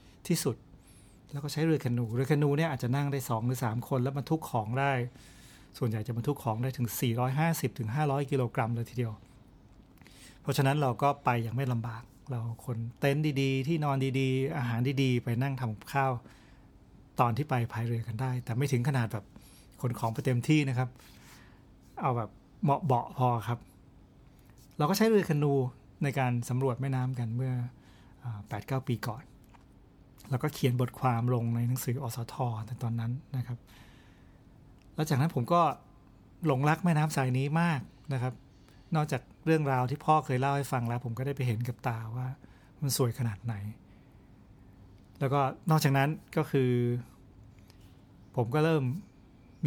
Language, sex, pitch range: Thai, male, 115-140 Hz